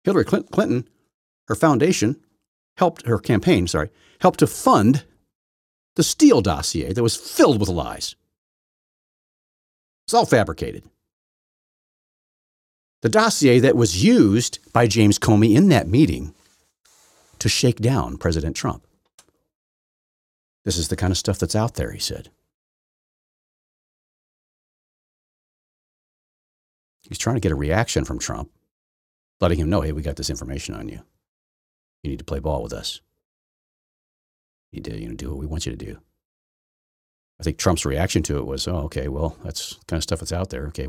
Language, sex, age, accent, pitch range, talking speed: English, male, 50-69, American, 75-105 Hz, 155 wpm